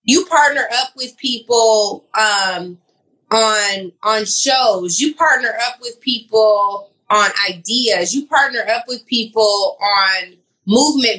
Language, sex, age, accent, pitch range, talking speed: English, female, 20-39, American, 190-245 Hz, 125 wpm